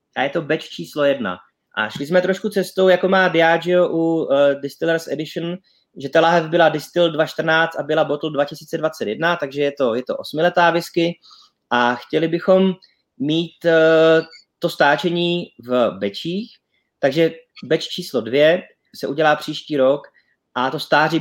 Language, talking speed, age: Czech, 155 wpm, 20-39